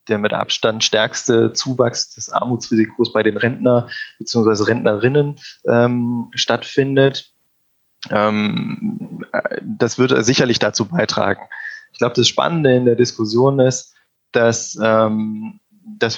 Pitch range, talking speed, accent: 110-135 Hz, 115 wpm, German